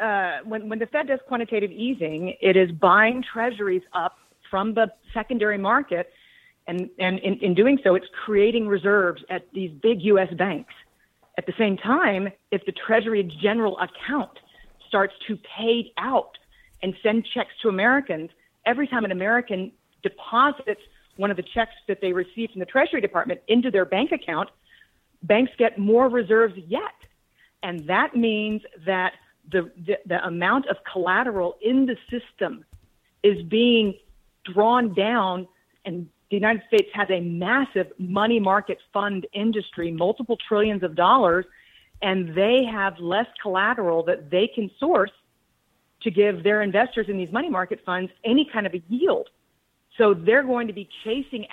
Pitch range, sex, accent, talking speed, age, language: 185-230 Hz, female, American, 155 wpm, 40-59, English